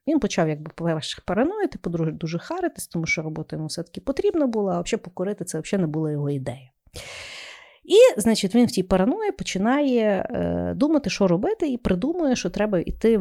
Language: Ukrainian